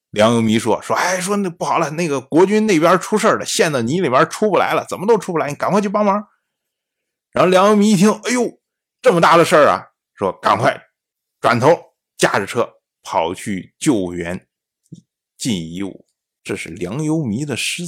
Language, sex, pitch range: Chinese, male, 145-220 Hz